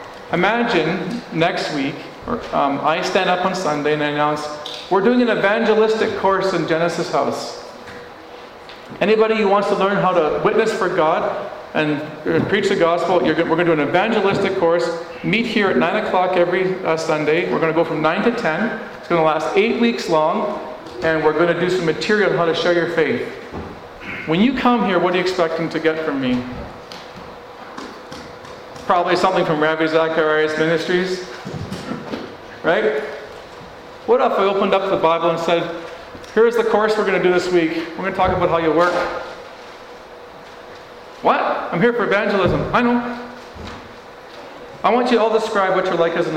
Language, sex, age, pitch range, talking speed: English, male, 40-59, 165-210 Hz, 185 wpm